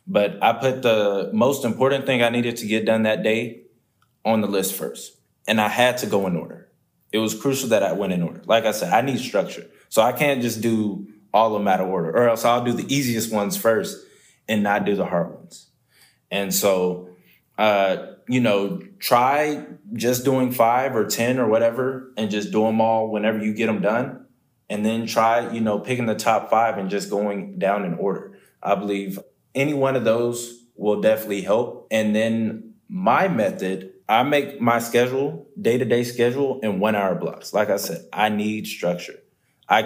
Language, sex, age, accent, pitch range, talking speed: English, male, 20-39, American, 105-125 Hz, 200 wpm